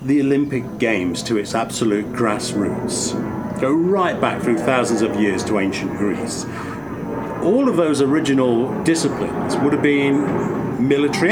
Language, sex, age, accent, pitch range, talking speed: English, male, 50-69, British, 115-165 Hz, 140 wpm